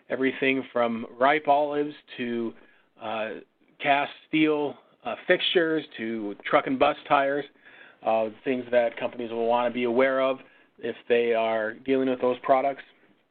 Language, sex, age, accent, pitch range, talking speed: English, male, 40-59, American, 120-140 Hz, 145 wpm